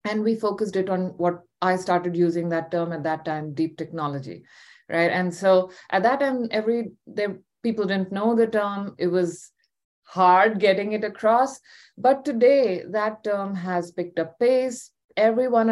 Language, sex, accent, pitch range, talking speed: English, female, Indian, 175-225 Hz, 165 wpm